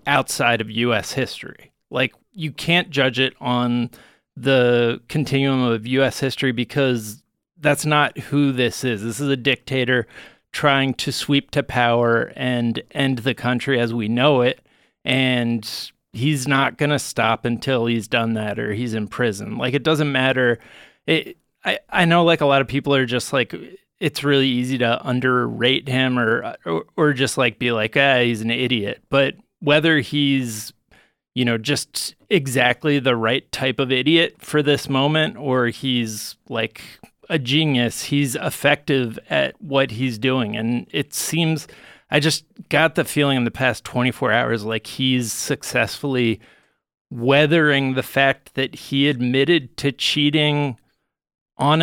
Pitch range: 120-145 Hz